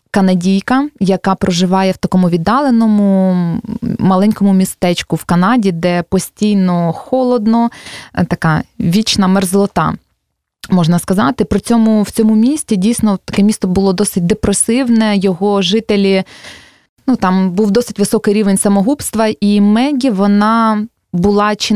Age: 20-39